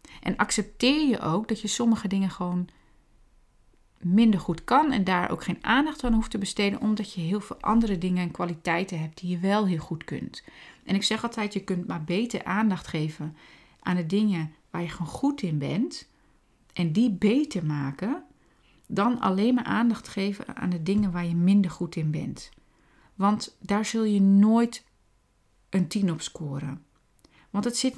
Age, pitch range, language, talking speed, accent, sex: 40-59, 180-230 Hz, Dutch, 180 wpm, Dutch, female